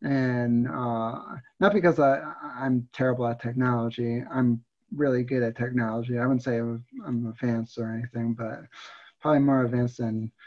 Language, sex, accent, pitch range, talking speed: English, male, American, 120-150 Hz, 155 wpm